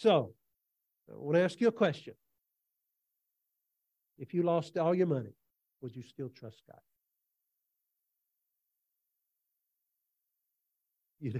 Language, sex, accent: English, male, American